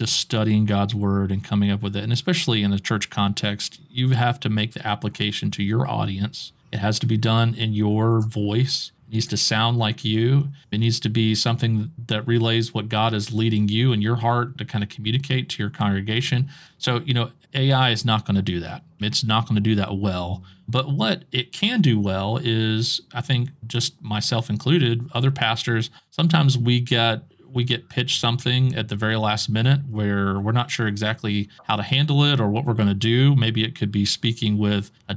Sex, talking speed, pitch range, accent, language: male, 210 wpm, 105-125 Hz, American, English